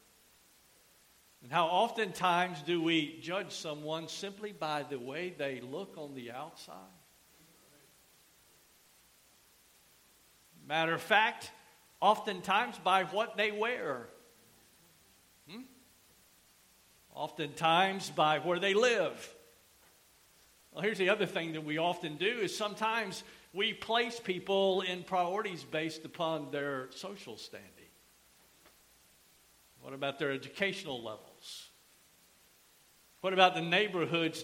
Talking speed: 105 wpm